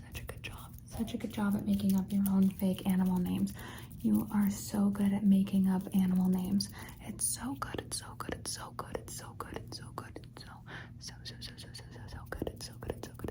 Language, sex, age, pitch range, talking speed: English, female, 20-39, 185-220 Hz, 225 wpm